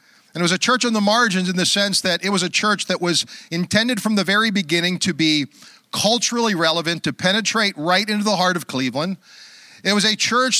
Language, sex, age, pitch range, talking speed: English, male, 40-59, 160-205 Hz, 220 wpm